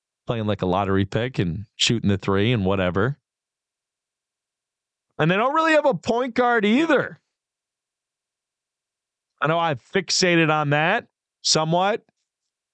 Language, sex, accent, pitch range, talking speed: English, male, American, 115-165 Hz, 125 wpm